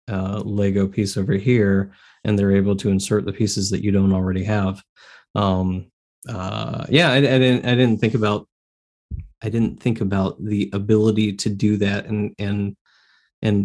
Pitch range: 100-115 Hz